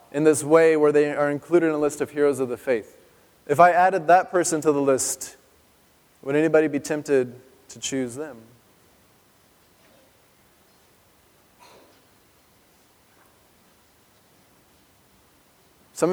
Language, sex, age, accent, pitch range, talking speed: English, male, 20-39, American, 130-170 Hz, 115 wpm